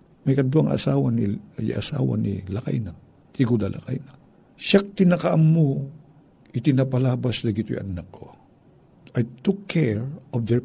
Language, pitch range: Filipino, 110-160 Hz